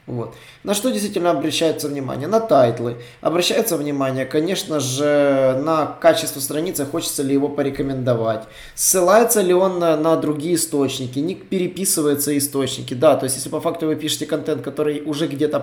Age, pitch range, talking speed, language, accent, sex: 20-39, 130-160 Hz, 155 wpm, Russian, native, male